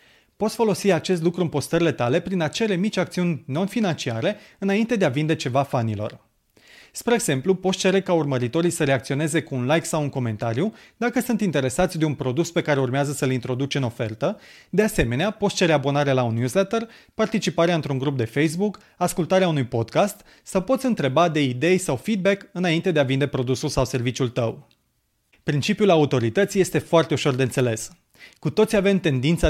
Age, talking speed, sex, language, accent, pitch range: 30-49, 175 wpm, male, Romanian, native, 135-190 Hz